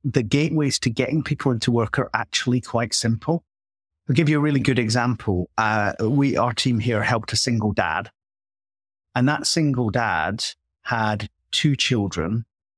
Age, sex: 30-49, male